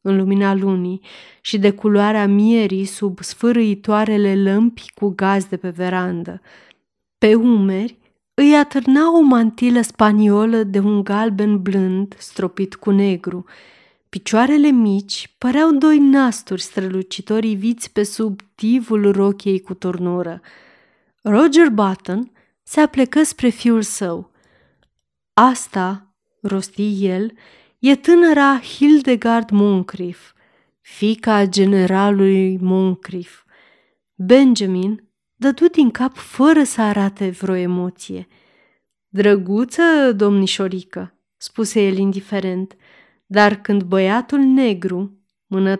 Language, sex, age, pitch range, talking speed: Romanian, female, 30-49, 195-245 Hz, 100 wpm